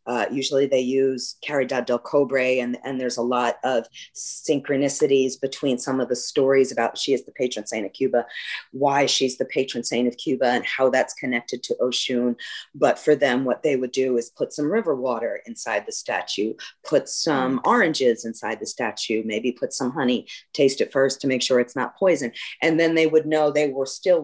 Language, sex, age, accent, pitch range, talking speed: English, female, 40-59, American, 120-135 Hz, 205 wpm